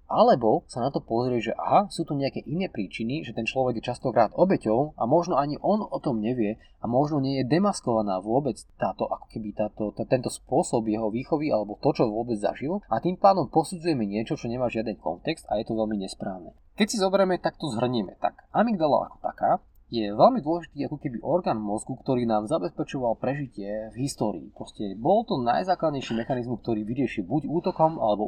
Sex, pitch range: male, 110-155 Hz